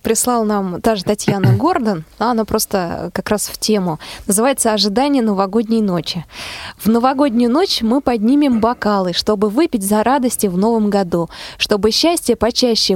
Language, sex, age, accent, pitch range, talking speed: Russian, female, 20-39, native, 195-255 Hz, 150 wpm